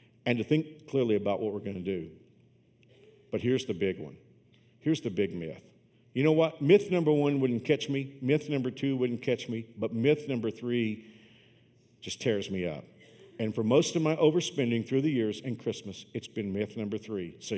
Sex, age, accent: male, 50-69, American